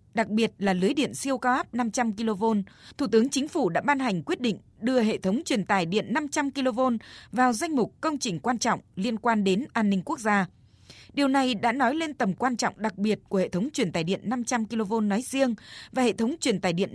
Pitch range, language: 195-255 Hz, Vietnamese